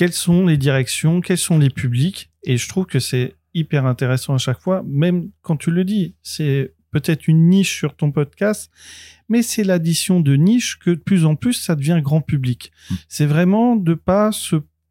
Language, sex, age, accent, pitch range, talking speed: French, male, 40-59, French, 135-165 Hz, 200 wpm